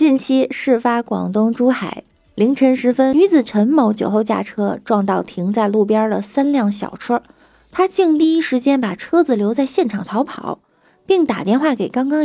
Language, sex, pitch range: Chinese, female, 200-275 Hz